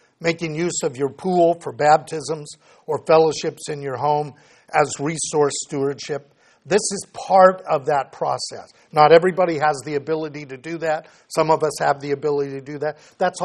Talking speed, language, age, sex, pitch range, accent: 175 wpm, English, 50-69, male, 140-170 Hz, American